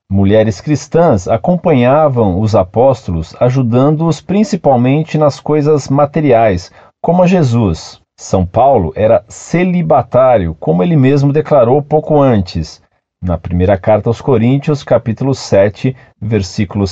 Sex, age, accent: male, 40-59, Brazilian